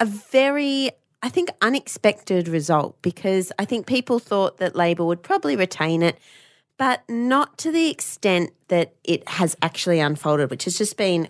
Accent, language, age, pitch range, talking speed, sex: Australian, English, 30-49, 160-215 Hz, 165 wpm, female